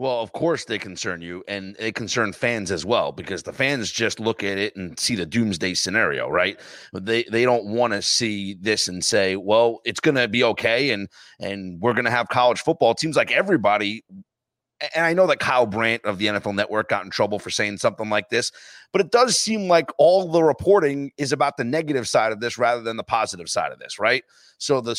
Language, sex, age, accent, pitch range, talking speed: English, male, 30-49, American, 115-160 Hz, 230 wpm